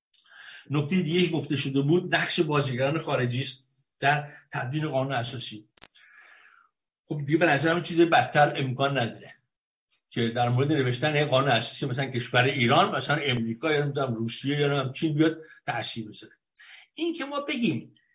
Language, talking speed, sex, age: Persian, 160 wpm, male, 60-79